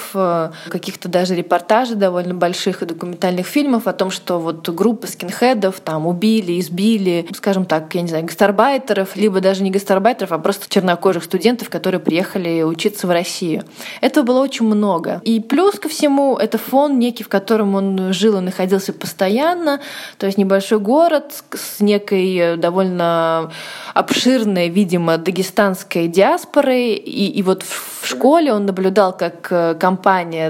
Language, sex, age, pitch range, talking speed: Russian, female, 20-39, 180-220 Hz, 145 wpm